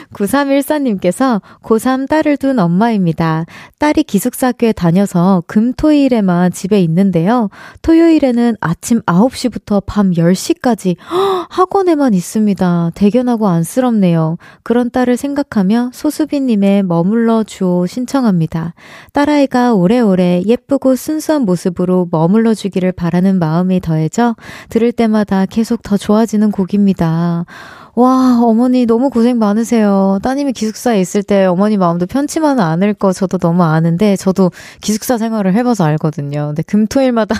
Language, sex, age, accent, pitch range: Korean, female, 20-39, native, 185-250 Hz